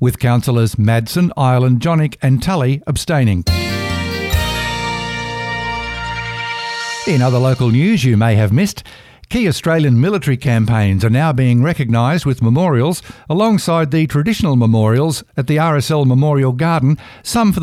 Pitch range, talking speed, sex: 120-160 Hz, 125 wpm, male